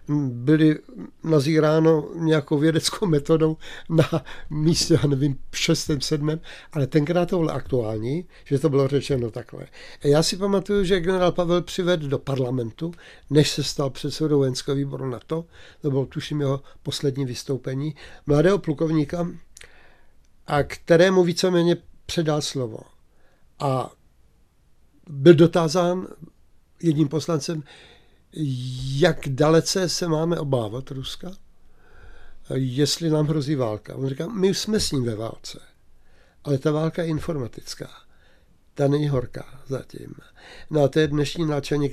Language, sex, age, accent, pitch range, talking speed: Czech, male, 60-79, native, 140-165 Hz, 125 wpm